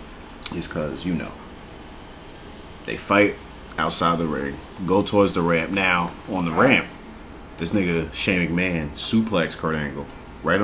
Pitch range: 75-95 Hz